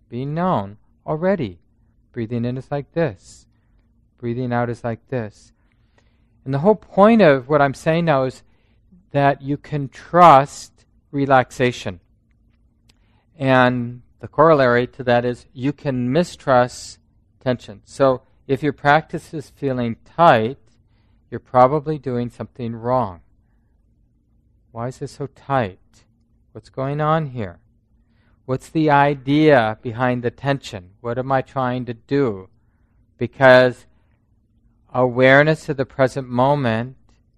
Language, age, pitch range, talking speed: English, 40-59, 110-135 Hz, 125 wpm